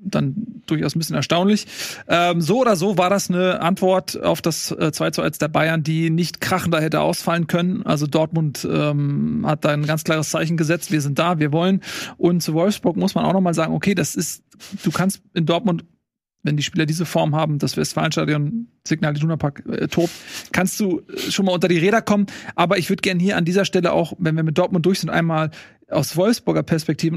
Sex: male